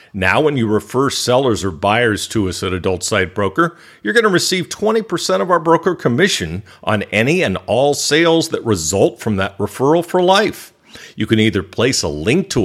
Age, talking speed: 50-69, 195 wpm